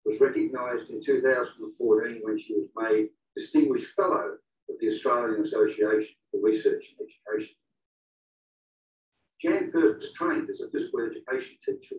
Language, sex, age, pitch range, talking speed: English, male, 50-69, 345-410 Hz, 135 wpm